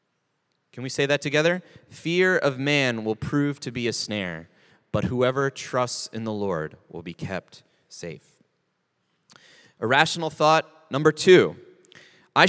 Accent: American